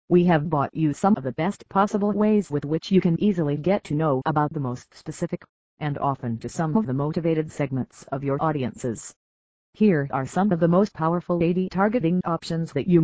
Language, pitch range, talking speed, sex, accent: English, 140-190 Hz, 205 wpm, female, American